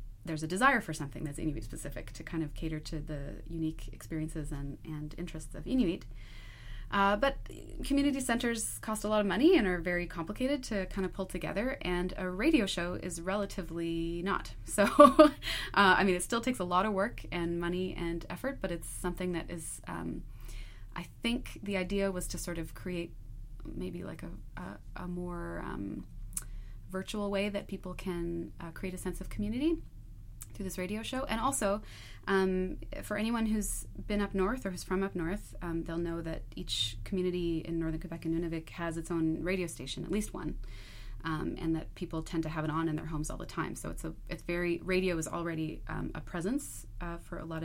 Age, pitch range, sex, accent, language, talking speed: 20-39, 160-195 Hz, female, American, English, 200 wpm